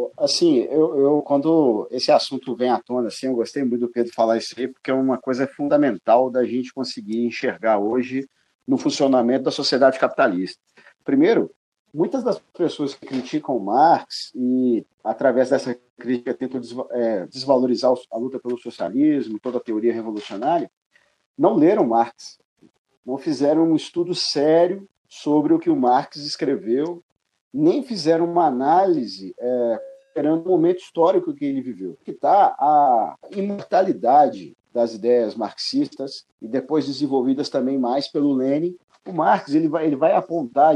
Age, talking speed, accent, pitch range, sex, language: 50-69, 145 wpm, Brazilian, 125-180 Hz, male, Portuguese